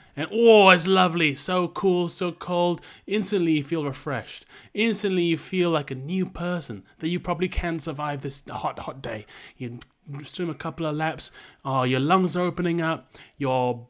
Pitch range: 135-180 Hz